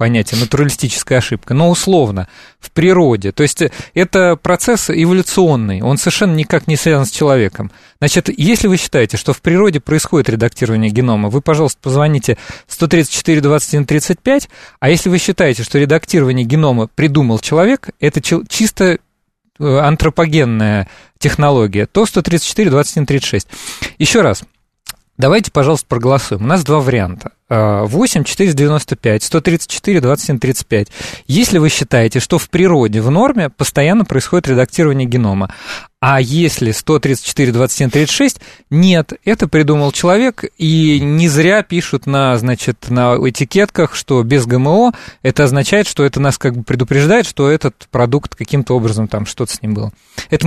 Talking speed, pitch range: 130 wpm, 125-175 Hz